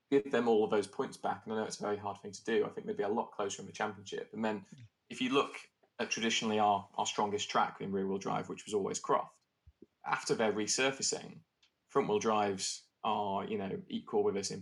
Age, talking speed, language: 20-39, 235 wpm, English